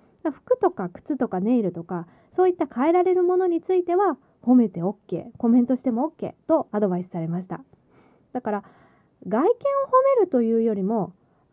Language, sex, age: Japanese, female, 20-39